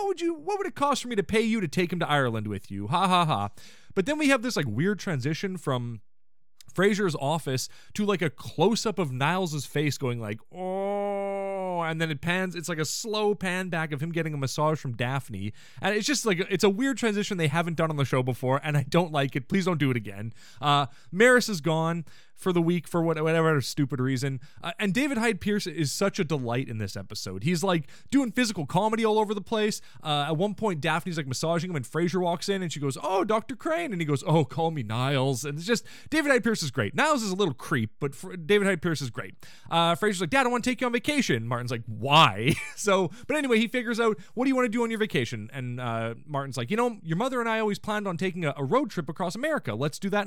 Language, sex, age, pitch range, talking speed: English, male, 20-39, 140-210 Hz, 260 wpm